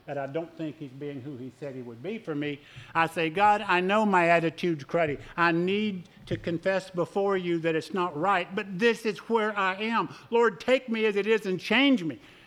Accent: American